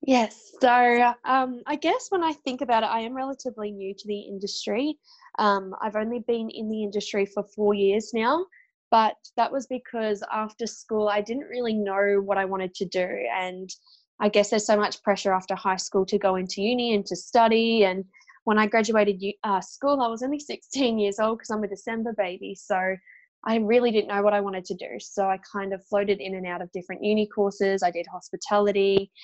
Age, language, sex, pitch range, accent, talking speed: 10-29, English, female, 200-240 Hz, Australian, 210 wpm